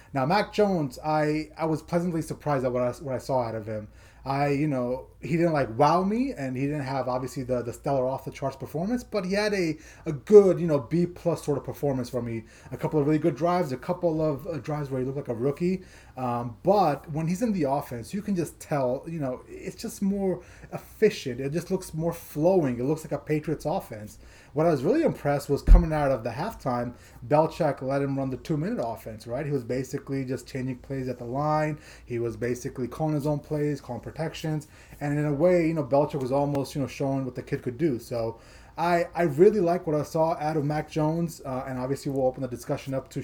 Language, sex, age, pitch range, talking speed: English, male, 20-39, 130-155 Hz, 240 wpm